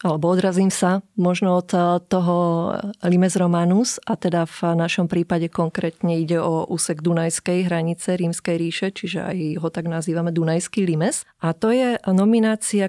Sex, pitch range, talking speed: female, 170-205 Hz, 150 wpm